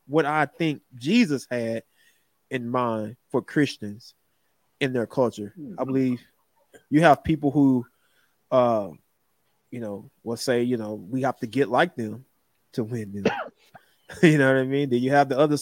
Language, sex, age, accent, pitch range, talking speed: English, male, 20-39, American, 115-145 Hz, 170 wpm